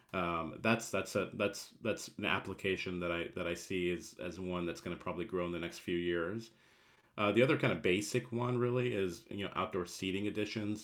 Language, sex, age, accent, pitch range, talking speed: English, male, 40-59, American, 90-110 Hz, 220 wpm